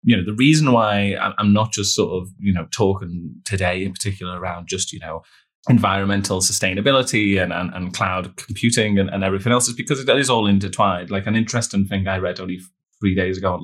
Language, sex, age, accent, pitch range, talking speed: English, male, 20-39, British, 90-100 Hz, 210 wpm